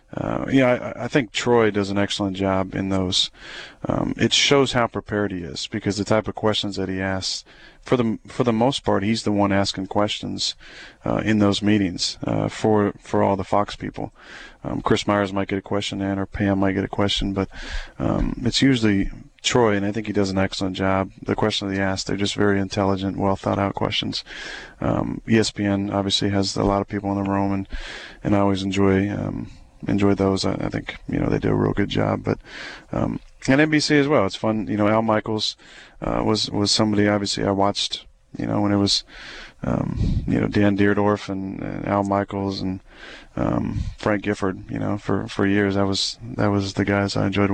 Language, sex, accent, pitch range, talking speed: English, male, American, 100-105 Hz, 215 wpm